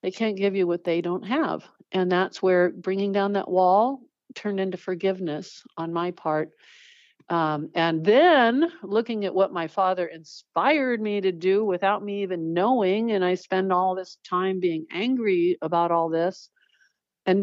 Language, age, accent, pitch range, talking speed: English, 50-69, American, 175-245 Hz, 170 wpm